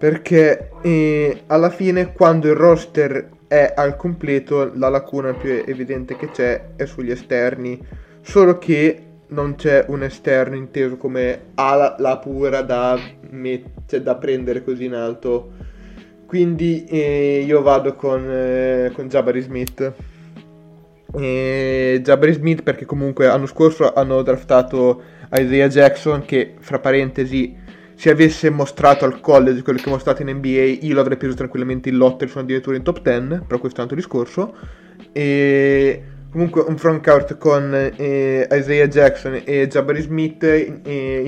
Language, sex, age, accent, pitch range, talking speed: Italian, male, 20-39, native, 130-150 Hz, 145 wpm